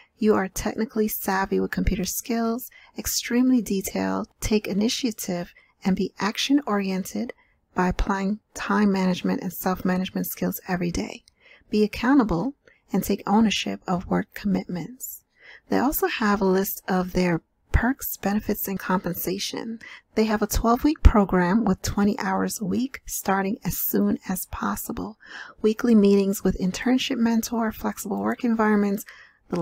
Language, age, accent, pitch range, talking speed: English, 40-59, American, 190-230 Hz, 135 wpm